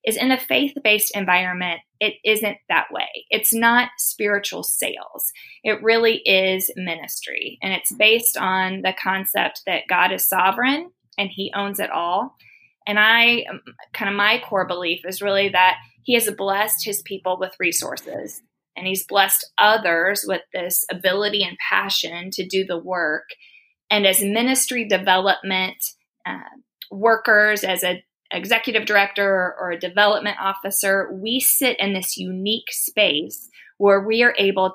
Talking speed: 150 wpm